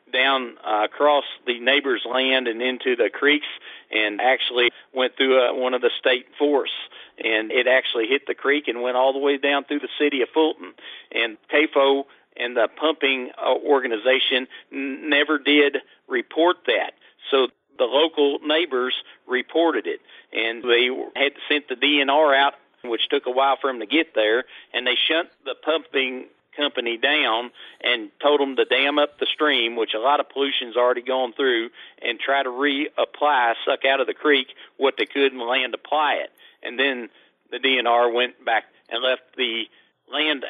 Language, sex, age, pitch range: English, male, 50-69, 125-145 Hz